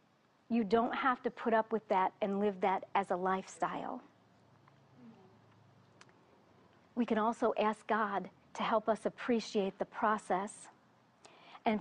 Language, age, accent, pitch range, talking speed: English, 40-59, American, 210-265 Hz, 130 wpm